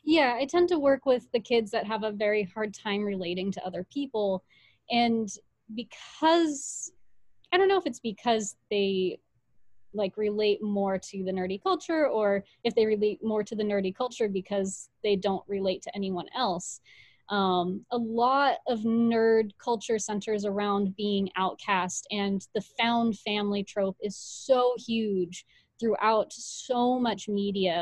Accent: American